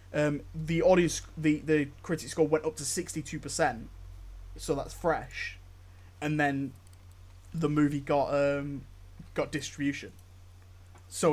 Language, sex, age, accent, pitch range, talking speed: English, male, 20-39, British, 95-160 Hz, 130 wpm